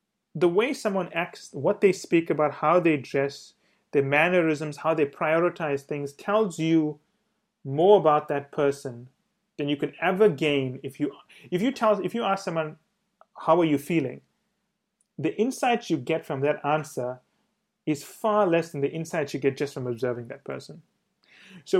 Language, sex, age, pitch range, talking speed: English, male, 30-49, 140-200 Hz, 160 wpm